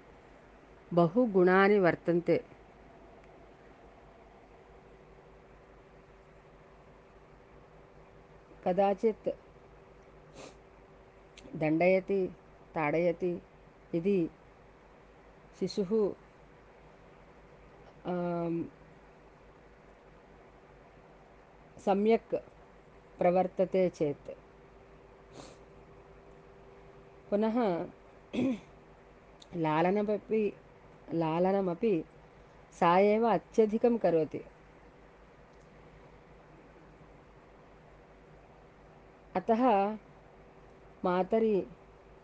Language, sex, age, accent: Malayalam, female, 40-59, native